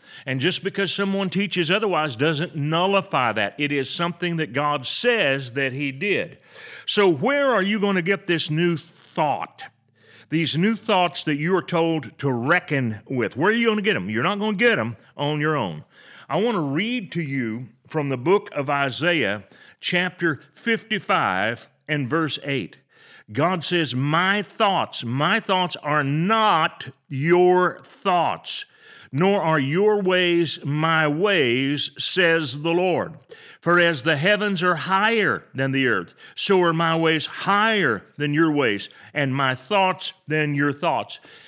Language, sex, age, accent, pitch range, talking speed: English, male, 40-59, American, 140-185 Hz, 160 wpm